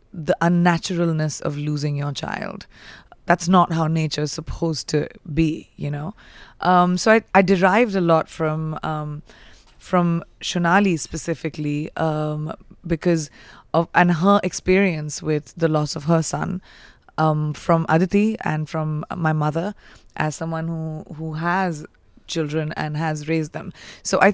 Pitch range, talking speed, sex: 155-180 Hz, 145 wpm, female